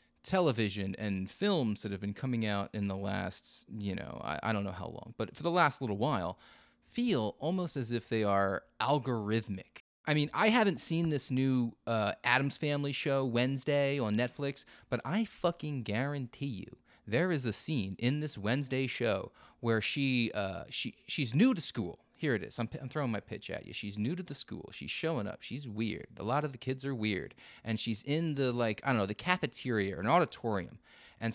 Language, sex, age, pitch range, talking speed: English, male, 30-49, 105-140 Hz, 205 wpm